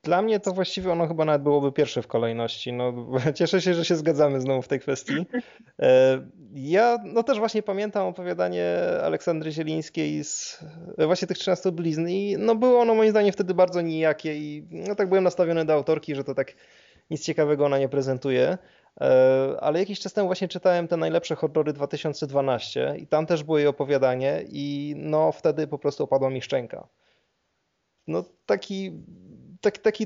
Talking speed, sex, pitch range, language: 175 wpm, male, 140-190 Hz, Polish